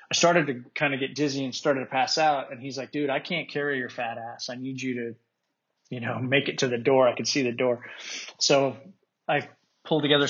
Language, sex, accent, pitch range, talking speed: English, male, American, 130-145 Hz, 245 wpm